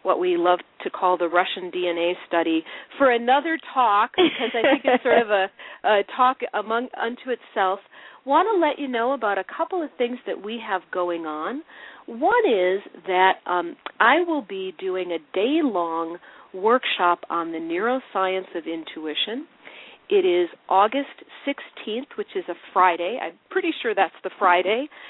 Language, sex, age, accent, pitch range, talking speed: English, female, 40-59, American, 175-255 Hz, 165 wpm